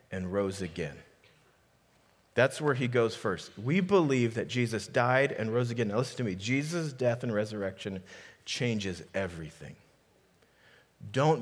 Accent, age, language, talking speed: American, 40-59, English, 140 wpm